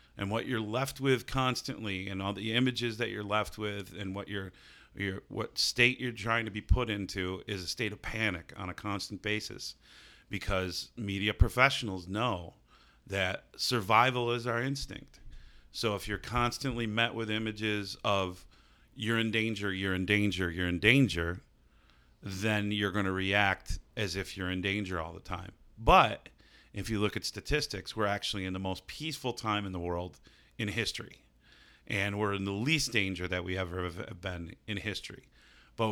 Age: 40-59